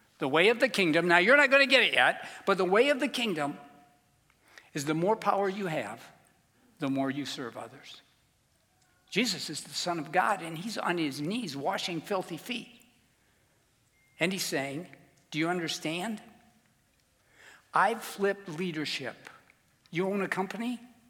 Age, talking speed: 60-79, 160 wpm